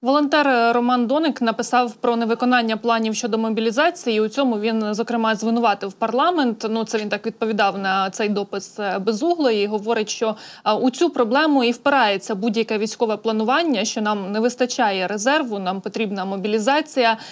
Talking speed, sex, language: 150 wpm, female, Ukrainian